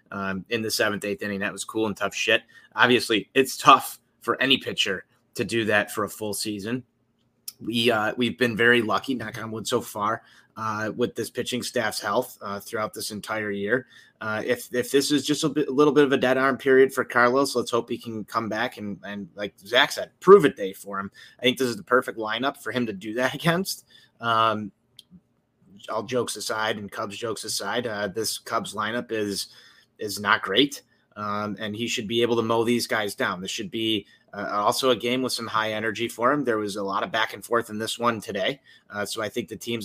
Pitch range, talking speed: 105-125 Hz, 230 wpm